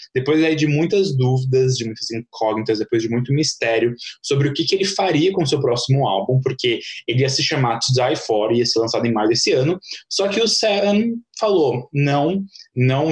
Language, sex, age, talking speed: Portuguese, male, 20-39, 205 wpm